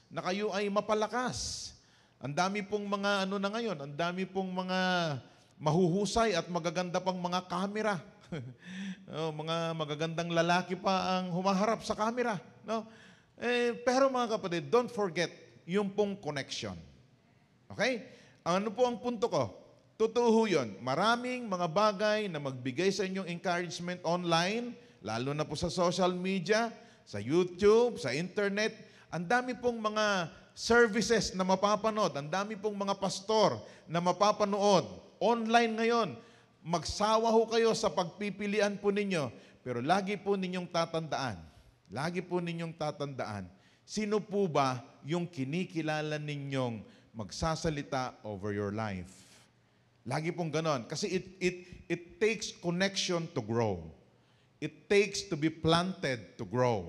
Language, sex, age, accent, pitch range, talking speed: English, male, 40-59, Filipino, 155-210 Hz, 130 wpm